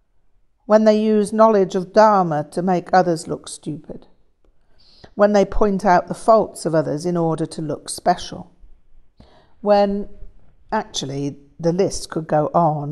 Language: English